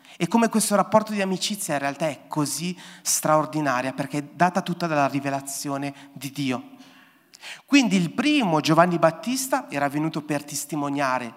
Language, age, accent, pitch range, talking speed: Italian, 30-49, native, 145-190 Hz, 150 wpm